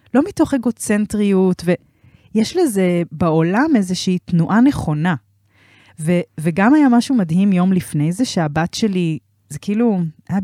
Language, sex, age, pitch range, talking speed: Hebrew, female, 20-39, 160-230 Hz, 115 wpm